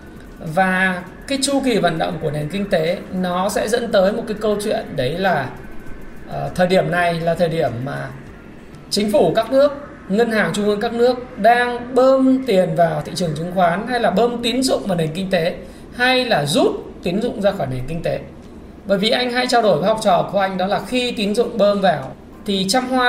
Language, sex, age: Vietnamese, male, 20-39